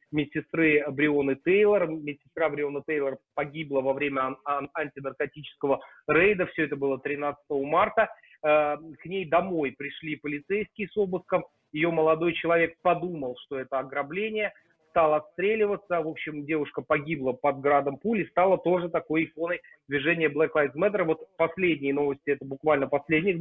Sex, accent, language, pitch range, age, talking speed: male, native, Russian, 145-175 Hz, 30-49, 145 wpm